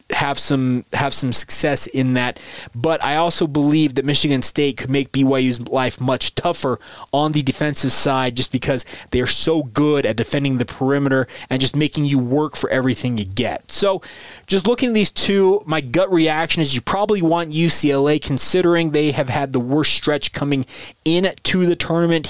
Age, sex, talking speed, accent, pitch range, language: 20-39, male, 185 wpm, American, 125-155 Hz, English